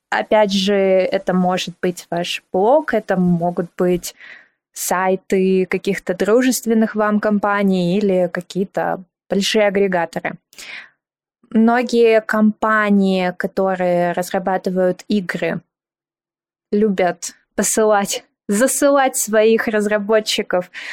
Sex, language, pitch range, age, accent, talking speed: female, Russian, 185-220 Hz, 20-39, native, 85 wpm